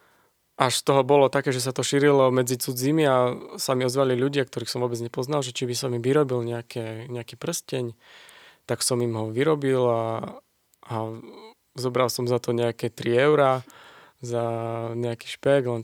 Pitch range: 125-145 Hz